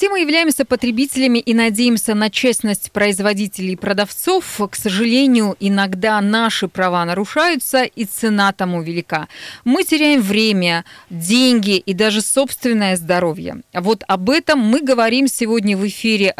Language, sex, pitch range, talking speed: Russian, female, 195-240 Hz, 135 wpm